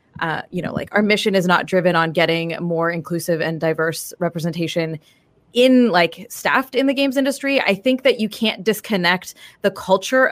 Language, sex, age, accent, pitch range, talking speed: English, female, 20-39, American, 180-240 Hz, 180 wpm